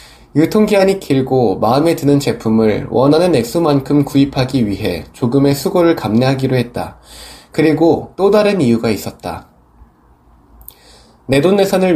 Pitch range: 115-160 Hz